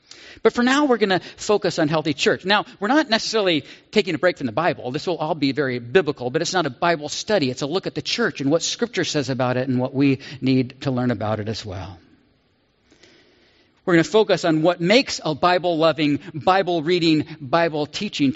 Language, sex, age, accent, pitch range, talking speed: English, male, 50-69, American, 130-195 Hz, 210 wpm